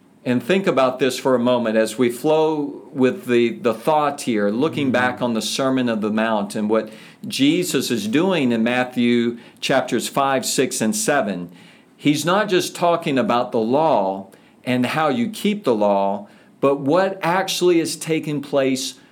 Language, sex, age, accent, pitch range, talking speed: English, male, 50-69, American, 115-150 Hz, 170 wpm